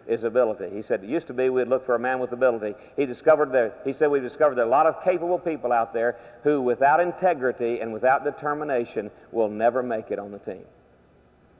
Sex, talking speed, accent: male, 230 wpm, American